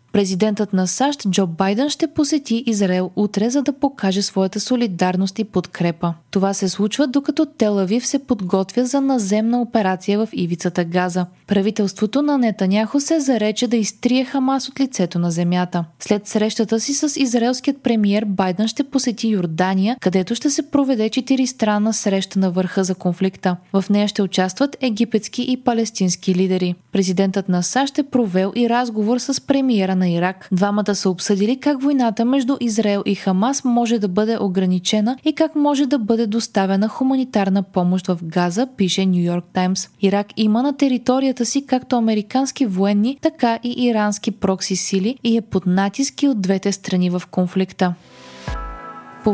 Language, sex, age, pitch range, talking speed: Bulgarian, female, 20-39, 185-250 Hz, 155 wpm